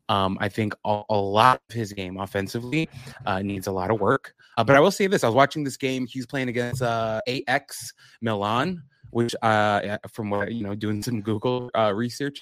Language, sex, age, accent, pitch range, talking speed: English, male, 20-39, American, 100-125 Hz, 215 wpm